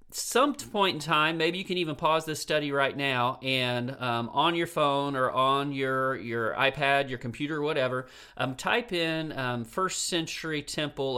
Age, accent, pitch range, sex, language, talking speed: 40-59, American, 125-165 Hz, male, English, 175 wpm